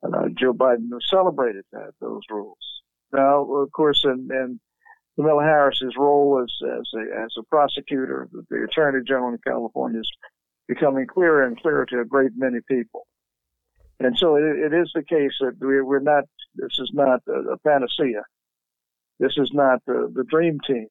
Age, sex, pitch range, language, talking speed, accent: 50-69, male, 120-145 Hz, English, 170 wpm, American